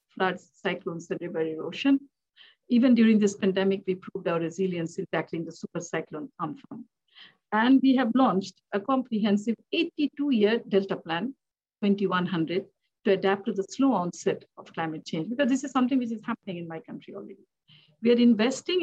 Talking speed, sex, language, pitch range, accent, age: 165 wpm, female, English, 180-240 Hz, Indian, 50-69